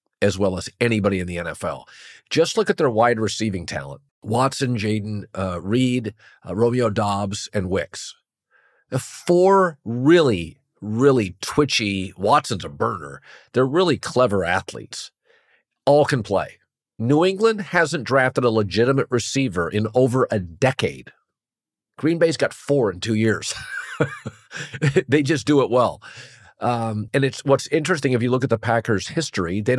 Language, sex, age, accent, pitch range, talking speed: English, male, 50-69, American, 105-135 Hz, 150 wpm